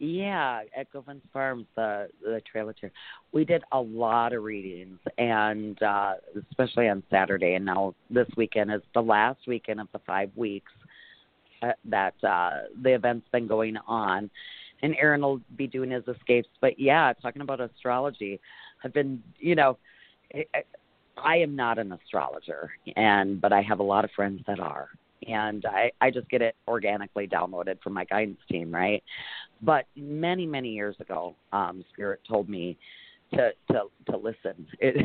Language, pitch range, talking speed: English, 105-135 Hz, 165 wpm